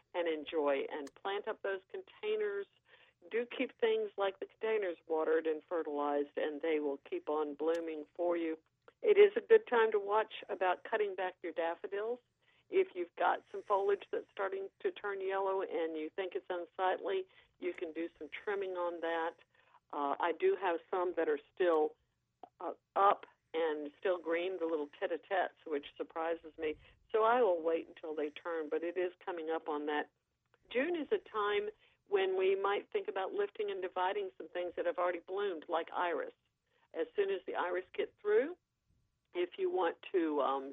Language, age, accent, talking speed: English, 40-59, American, 180 wpm